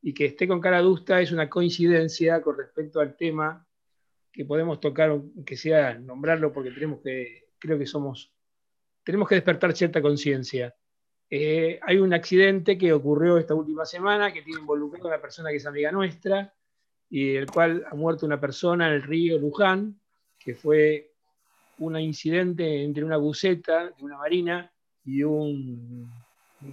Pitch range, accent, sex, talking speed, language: 145-175 Hz, Argentinian, male, 165 wpm, Spanish